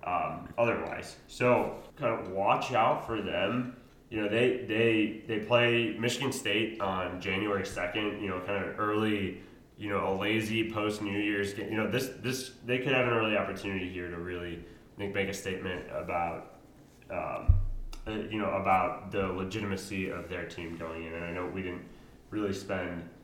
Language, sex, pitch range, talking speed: English, male, 90-120 Hz, 180 wpm